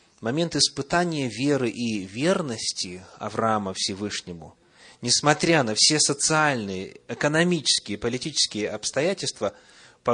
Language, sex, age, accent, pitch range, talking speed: Russian, male, 30-49, native, 110-155 Hz, 90 wpm